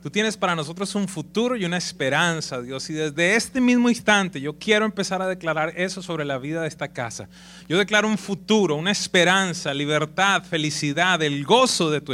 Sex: male